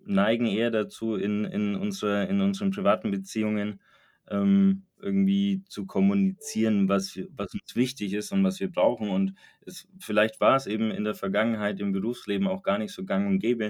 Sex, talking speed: male, 165 wpm